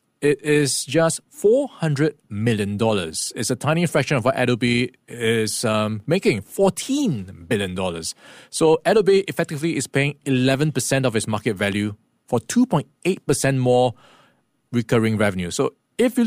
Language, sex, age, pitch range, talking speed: English, male, 20-39, 115-155 Hz, 130 wpm